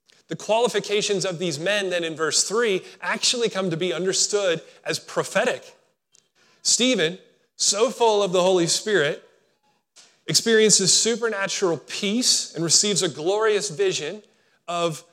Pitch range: 160-215 Hz